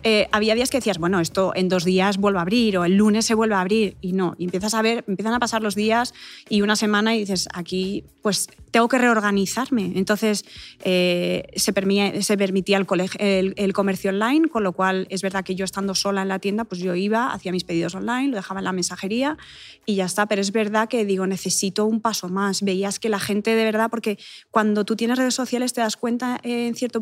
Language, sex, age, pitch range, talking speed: Spanish, female, 20-39, 195-240 Hz, 225 wpm